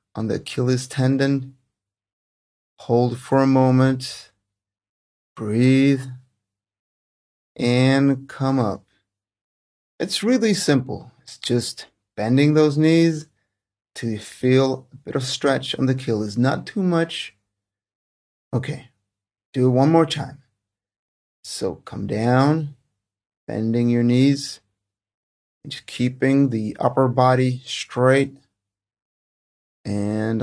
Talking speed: 105 wpm